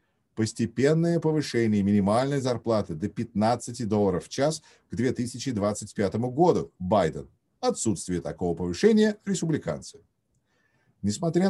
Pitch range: 100-155 Hz